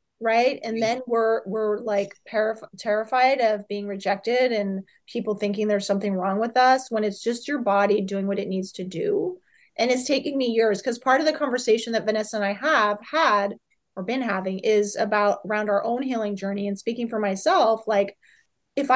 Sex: female